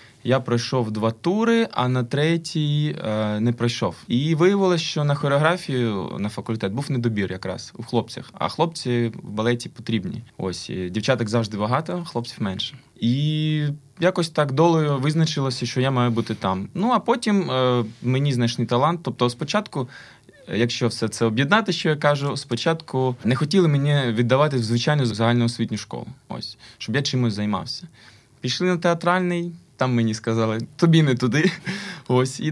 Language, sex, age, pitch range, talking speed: Ukrainian, male, 20-39, 115-150 Hz, 155 wpm